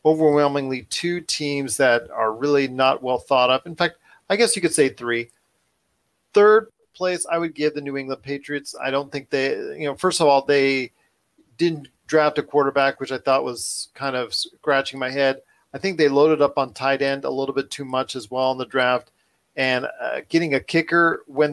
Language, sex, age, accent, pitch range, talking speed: English, male, 40-59, American, 135-165 Hz, 205 wpm